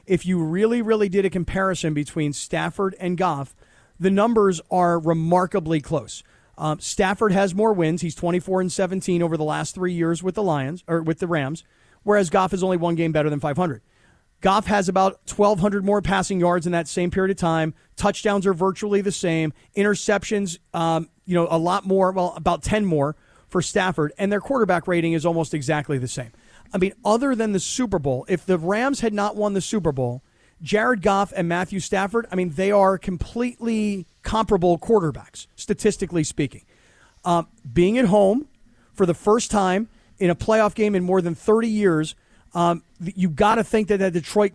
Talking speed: 190 wpm